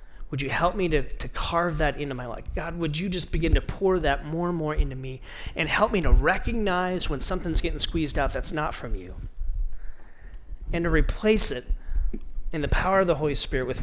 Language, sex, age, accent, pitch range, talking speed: English, male, 40-59, American, 115-170 Hz, 215 wpm